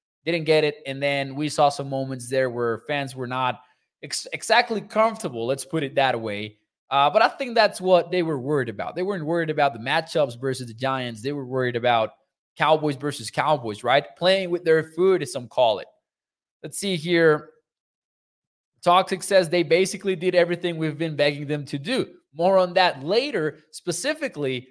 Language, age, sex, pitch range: English, 20-39, male, 135-180 Hz